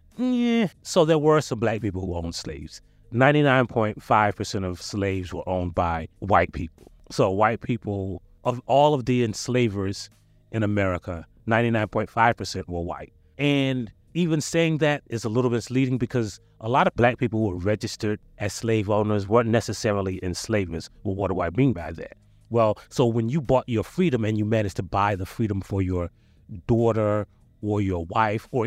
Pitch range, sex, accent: 100-125 Hz, male, American